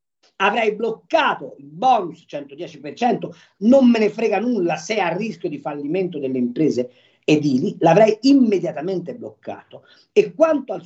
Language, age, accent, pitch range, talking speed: Italian, 50-69, native, 175-265 Hz, 140 wpm